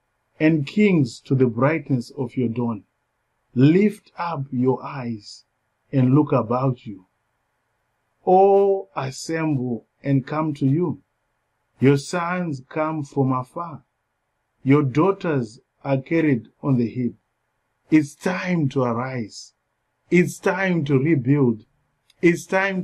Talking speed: 115 wpm